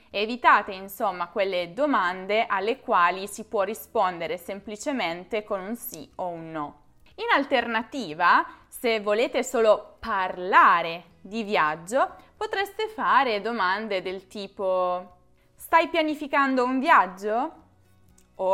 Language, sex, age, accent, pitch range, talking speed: Italian, female, 20-39, native, 185-235 Hz, 110 wpm